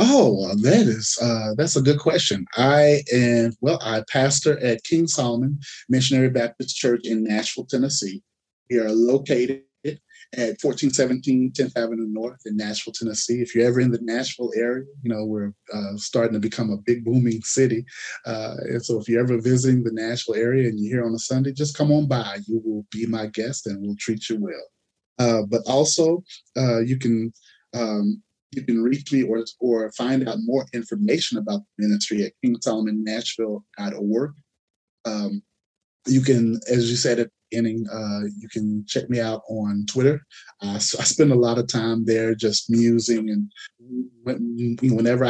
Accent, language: American, English